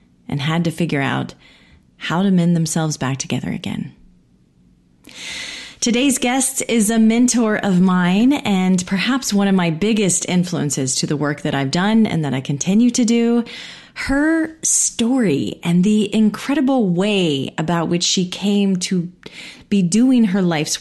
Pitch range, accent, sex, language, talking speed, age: 170-220 Hz, American, female, English, 155 wpm, 30-49